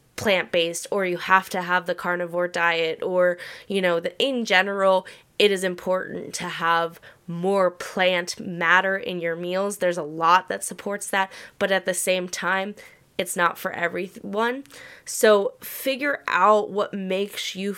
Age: 20-39